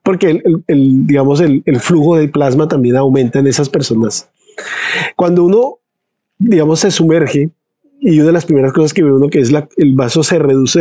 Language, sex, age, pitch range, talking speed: English, male, 40-59, 140-175 Hz, 200 wpm